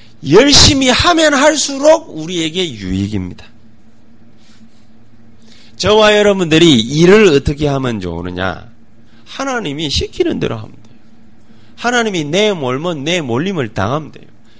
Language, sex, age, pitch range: Korean, male, 30-49, 110-180 Hz